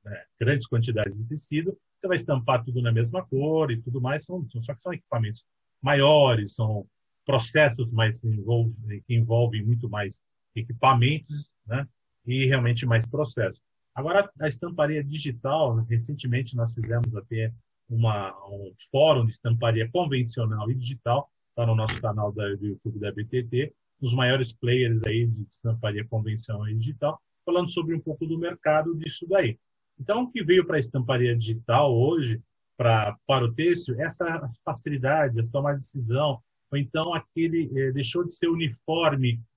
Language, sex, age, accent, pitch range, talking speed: Portuguese, male, 40-59, Brazilian, 115-145 Hz, 150 wpm